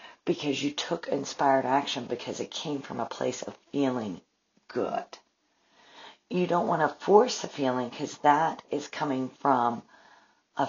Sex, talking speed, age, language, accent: female, 150 wpm, 50-69, English, American